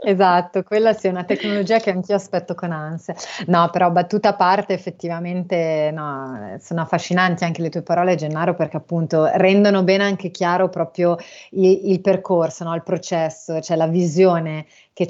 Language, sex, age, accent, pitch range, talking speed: Italian, female, 30-49, native, 160-180 Hz, 165 wpm